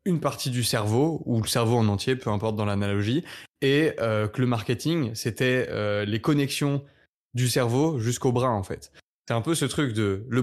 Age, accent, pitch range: 20-39, French, 110-130 Hz